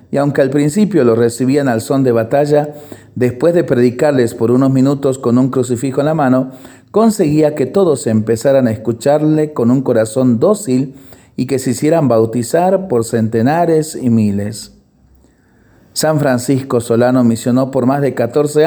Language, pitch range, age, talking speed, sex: Spanish, 115-145 Hz, 40-59, 160 wpm, male